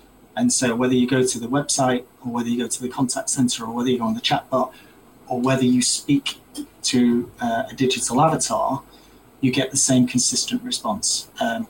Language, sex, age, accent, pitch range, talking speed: English, male, 30-49, British, 125-145 Hz, 205 wpm